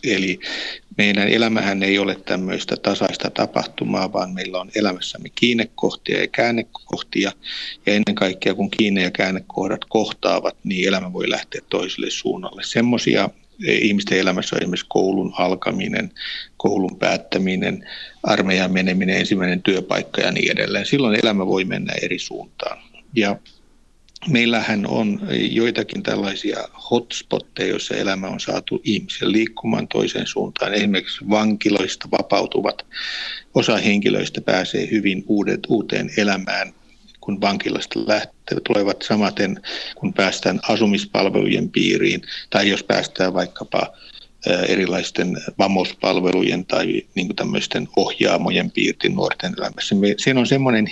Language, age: Finnish, 60-79